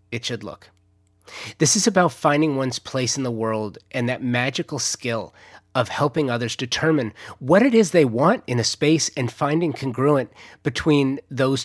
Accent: American